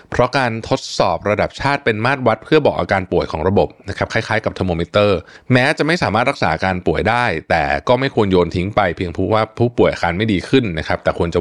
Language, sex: Thai, male